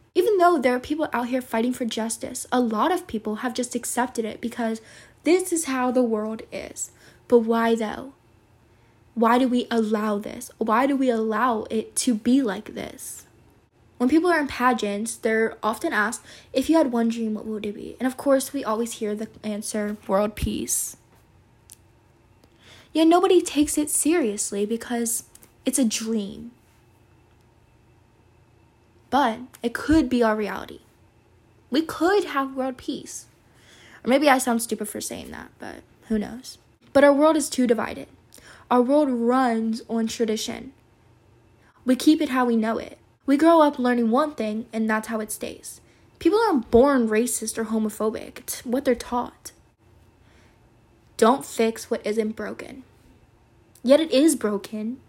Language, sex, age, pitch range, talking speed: English, female, 10-29, 205-260 Hz, 160 wpm